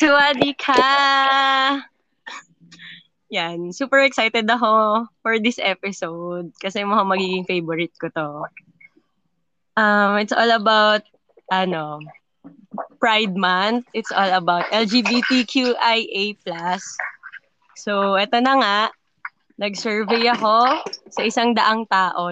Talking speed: 100 wpm